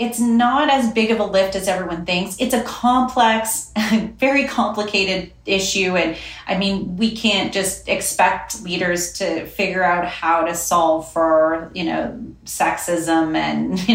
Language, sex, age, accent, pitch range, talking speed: English, female, 30-49, American, 175-220 Hz, 155 wpm